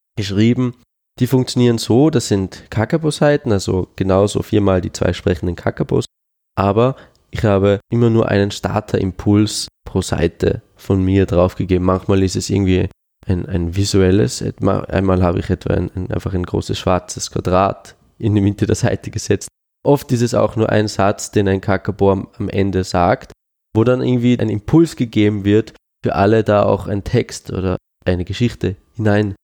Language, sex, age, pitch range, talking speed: German, male, 20-39, 95-115 Hz, 165 wpm